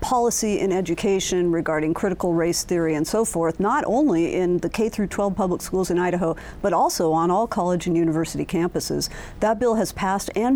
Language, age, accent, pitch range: English, 50-69, American, 170-210 Hz